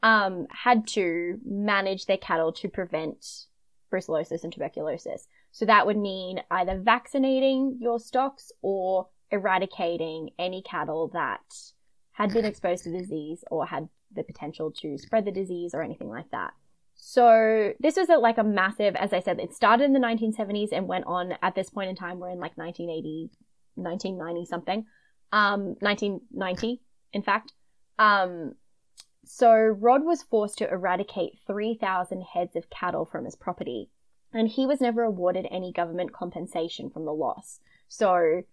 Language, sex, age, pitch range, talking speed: English, female, 10-29, 175-220 Hz, 155 wpm